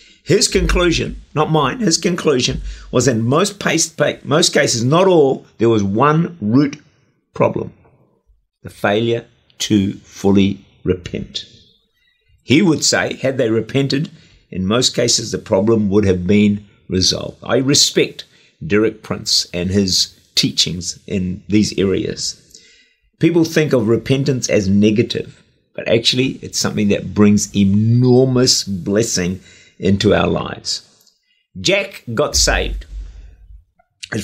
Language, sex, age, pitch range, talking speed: English, male, 50-69, 100-150 Hz, 120 wpm